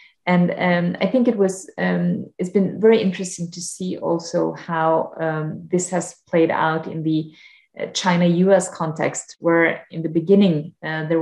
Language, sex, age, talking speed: English, female, 30-49, 160 wpm